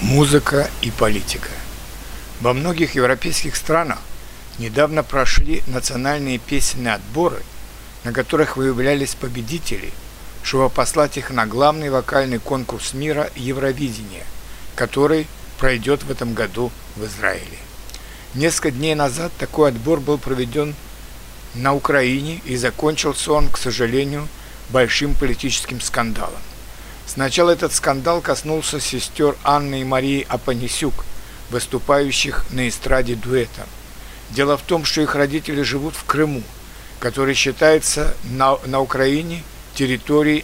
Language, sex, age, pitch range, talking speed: Russian, male, 60-79, 125-150 Hz, 115 wpm